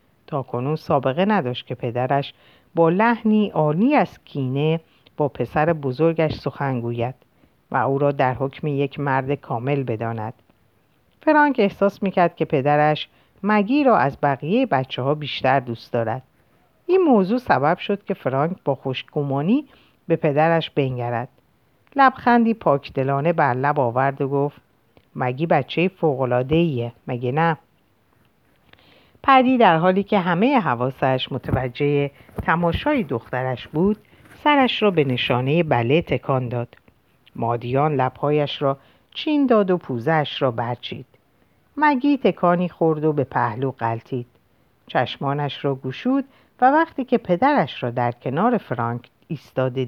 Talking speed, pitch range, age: 130 wpm, 130-195 Hz, 50-69